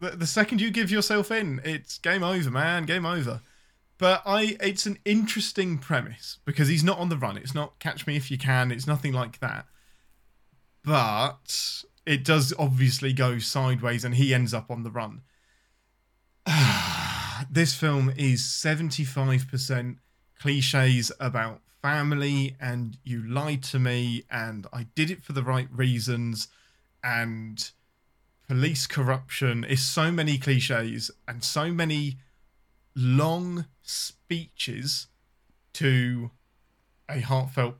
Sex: male